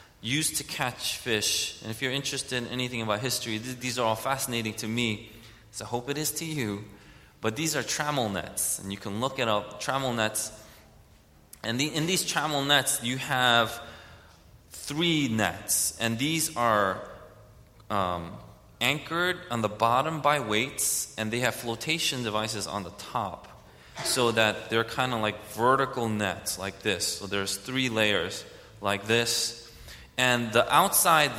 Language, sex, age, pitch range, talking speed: English, male, 20-39, 105-130 Hz, 160 wpm